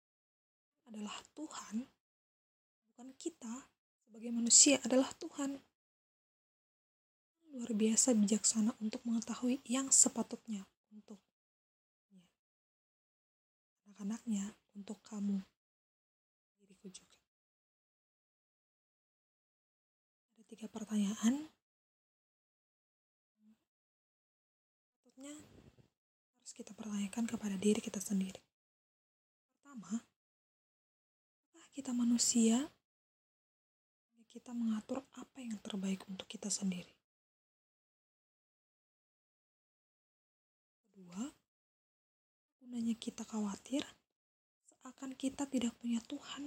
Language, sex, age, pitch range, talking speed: Indonesian, female, 20-39, 215-260 Hz, 65 wpm